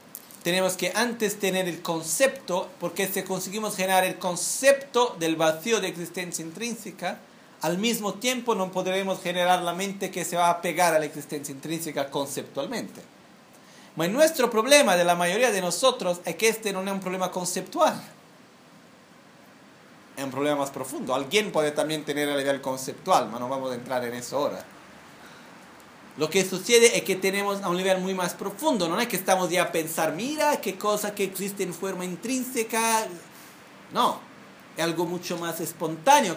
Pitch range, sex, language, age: 170-210 Hz, male, Italian, 40-59